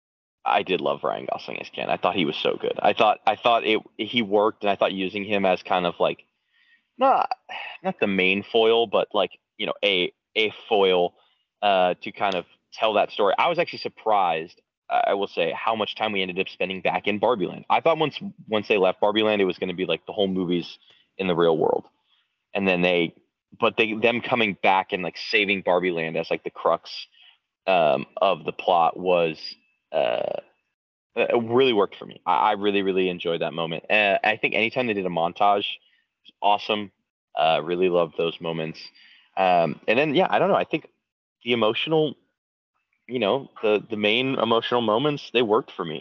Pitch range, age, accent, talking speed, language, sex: 90-115 Hz, 20-39, American, 205 wpm, English, male